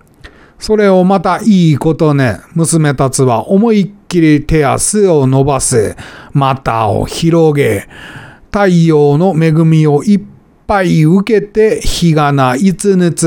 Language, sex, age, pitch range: Japanese, male, 40-59, 140-195 Hz